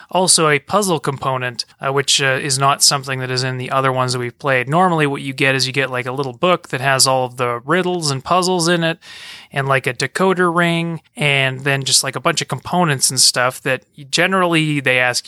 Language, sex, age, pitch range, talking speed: English, male, 30-49, 130-170 Hz, 230 wpm